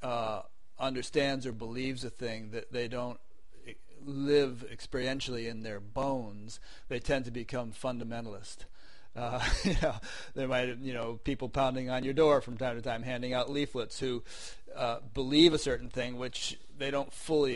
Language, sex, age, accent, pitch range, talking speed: English, male, 40-59, American, 115-130 Hz, 165 wpm